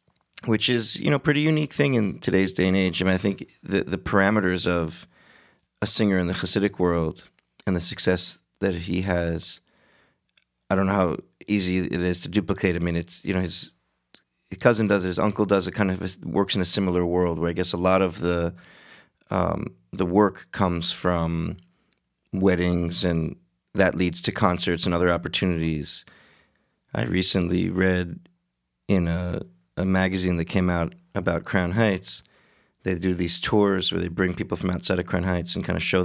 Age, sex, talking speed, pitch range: 30-49, male, 185 wpm, 85-100 Hz